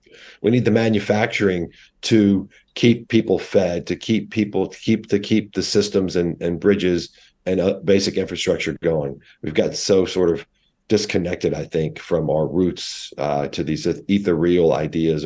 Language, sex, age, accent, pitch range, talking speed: English, male, 40-59, American, 70-105 Hz, 165 wpm